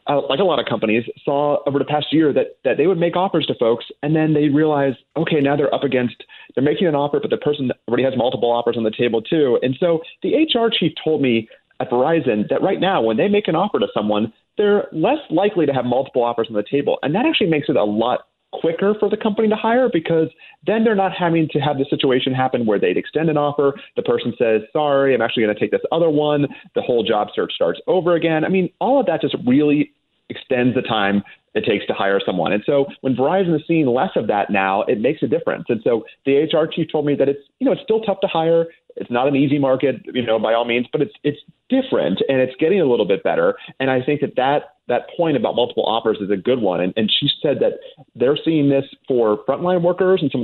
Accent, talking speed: American, 255 wpm